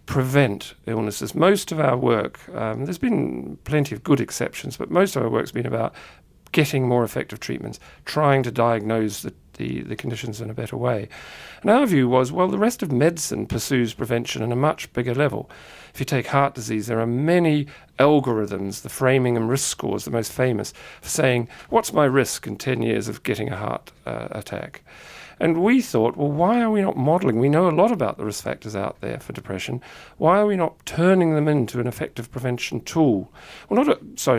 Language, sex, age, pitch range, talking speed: English, male, 50-69, 115-150 Hz, 200 wpm